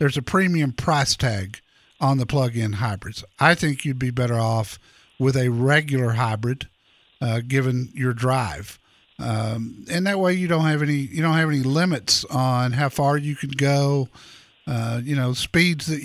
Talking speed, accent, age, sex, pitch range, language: 175 wpm, American, 50-69, male, 125-155 Hz, English